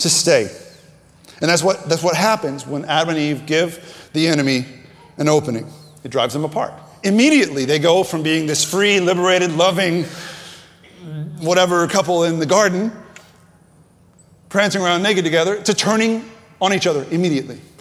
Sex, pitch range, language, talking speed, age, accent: male, 160-215 Hz, English, 150 wpm, 30-49, American